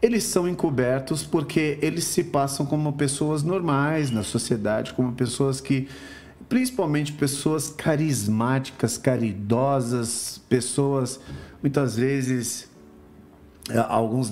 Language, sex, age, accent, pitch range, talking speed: Portuguese, male, 40-59, Brazilian, 115-150 Hz, 95 wpm